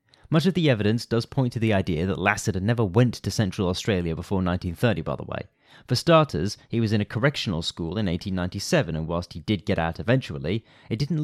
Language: English